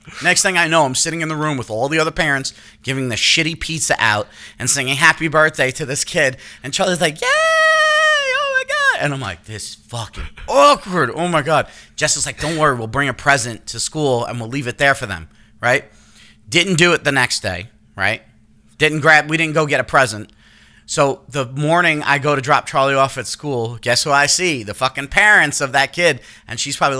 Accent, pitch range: American, 120-155 Hz